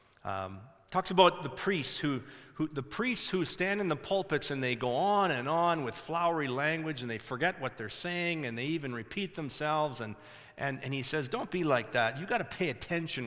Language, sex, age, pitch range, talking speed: English, male, 40-59, 140-195 Hz, 215 wpm